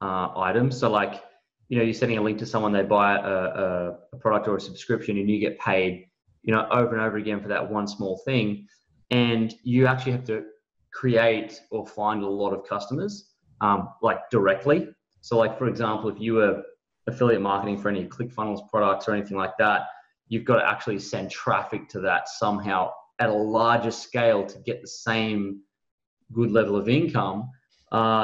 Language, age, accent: English, 20-39, Australian